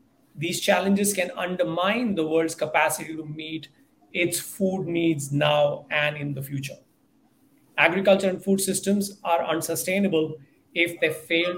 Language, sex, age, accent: English, male, 30-49, Indian